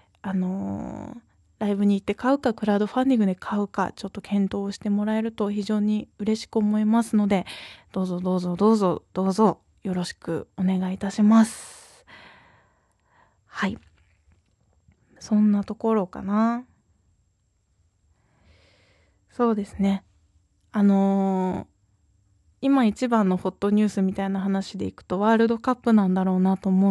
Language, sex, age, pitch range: Japanese, female, 20-39, 190-235 Hz